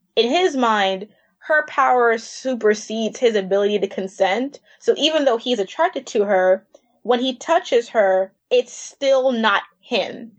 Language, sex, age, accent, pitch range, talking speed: English, female, 20-39, American, 200-255 Hz, 145 wpm